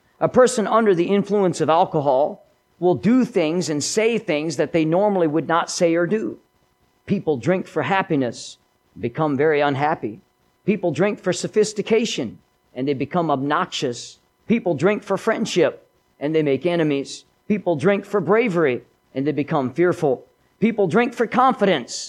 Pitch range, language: 145-195 Hz, English